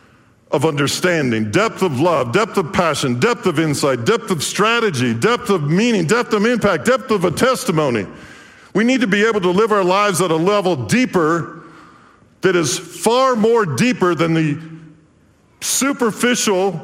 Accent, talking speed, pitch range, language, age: American, 160 wpm, 155-225 Hz, English, 50-69